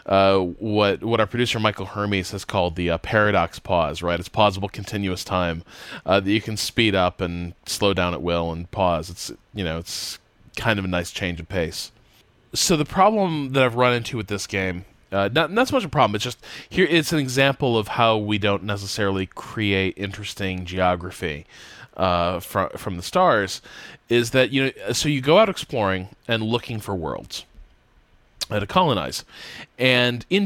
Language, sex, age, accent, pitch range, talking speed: English, male, 20-39, American, 95-125 Hz, 185 wpm